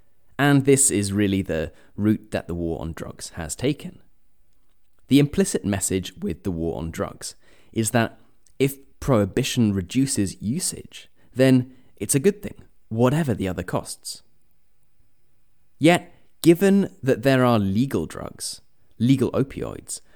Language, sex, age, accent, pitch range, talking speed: English, male, 30-49, British, 100-140 Hz, 135 wpm